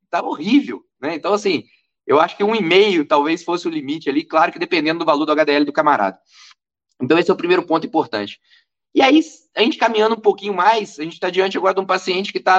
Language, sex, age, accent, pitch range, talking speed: Portuguese, male, 20-39, Brazilian, 170-275 Hz, 240 wpm